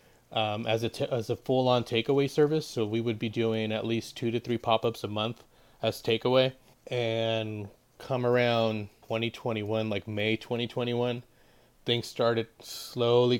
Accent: American